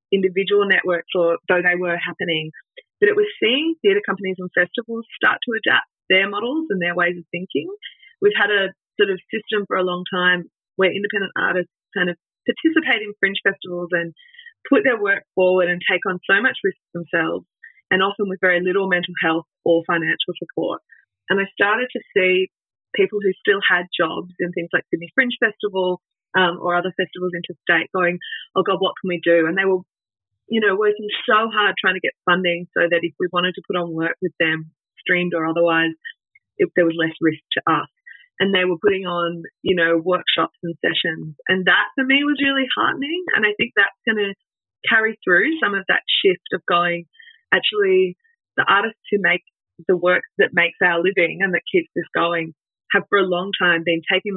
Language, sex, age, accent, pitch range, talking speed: English, female, 20-39, Australian, 175-225 Hz, 200 wpm